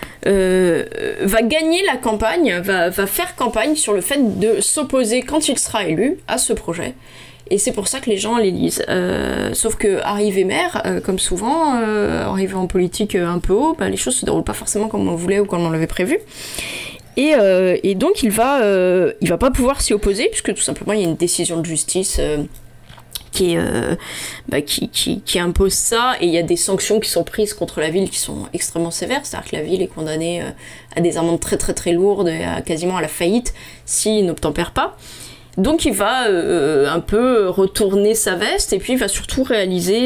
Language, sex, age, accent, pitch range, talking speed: French, female, 20-39, French, 180-260 Hz, 220 wpm